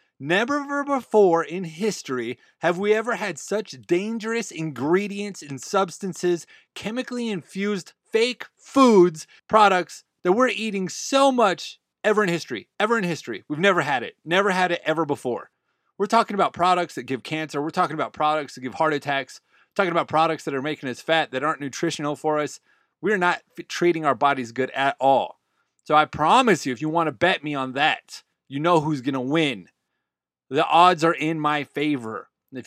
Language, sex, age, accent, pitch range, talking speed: English, male, 30-49, American, 150-205 Hz, 180 wpm